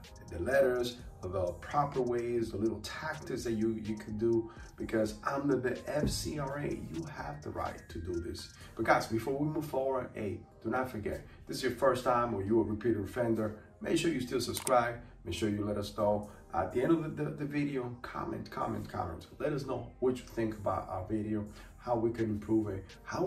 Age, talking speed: 30-49, 210 wpm